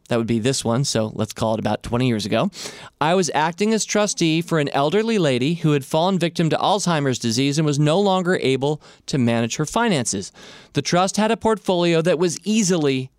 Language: English